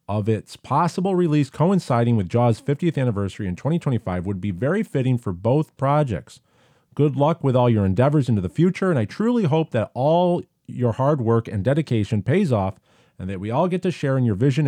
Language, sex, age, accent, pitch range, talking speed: English, male, 40-59, American, 105-150 Hz, 205 wpm